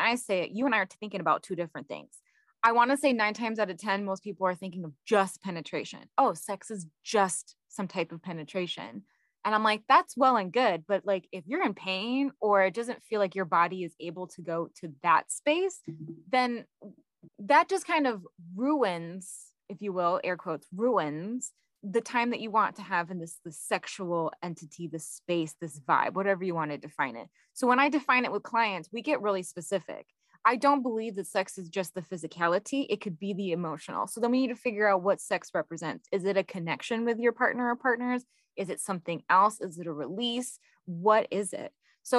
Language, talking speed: English, 220 wpm